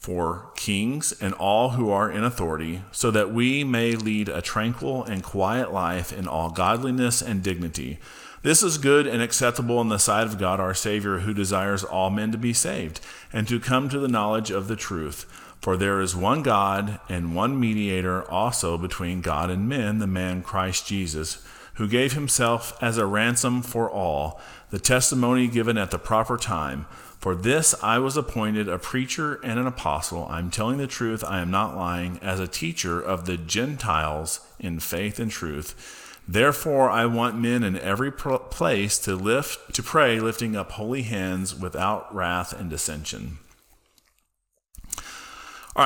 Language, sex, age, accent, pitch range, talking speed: English, male, 40-59, American, 95-120 Hz, 170 wpm